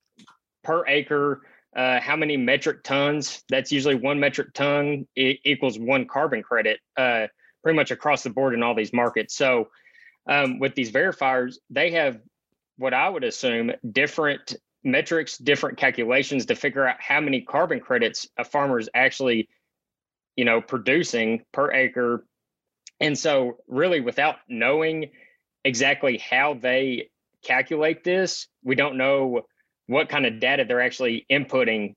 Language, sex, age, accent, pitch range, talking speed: English, male, 20-39, American, 125-150 Hz, 145 wpm